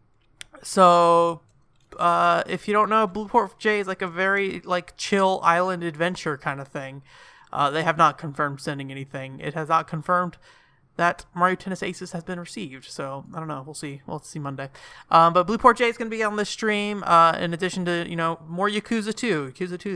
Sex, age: male, 30-49